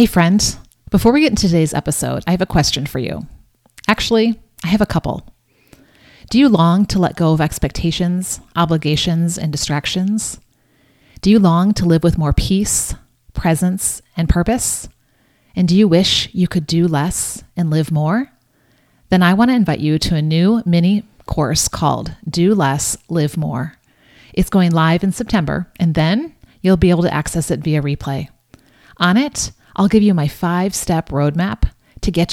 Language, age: English, 30-49